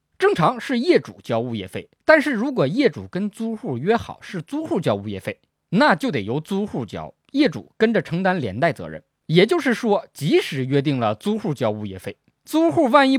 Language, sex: Chinese, male